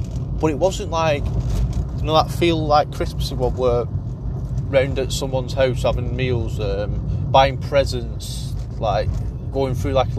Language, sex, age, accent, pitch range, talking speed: English, male, 20-39, British, 115-135 Hz, 160 wpm